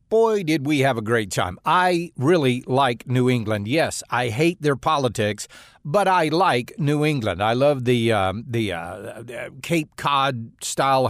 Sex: male